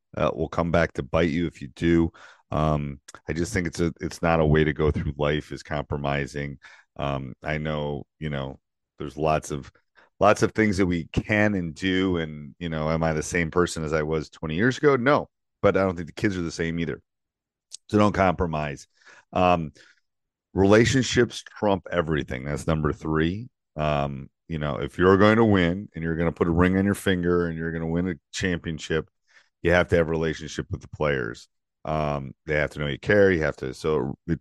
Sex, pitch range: male, 75-95 Hz